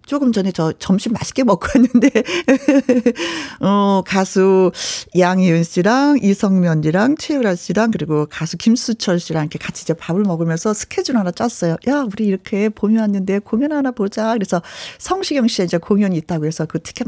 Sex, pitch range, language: female, 185-270 Hz, Korean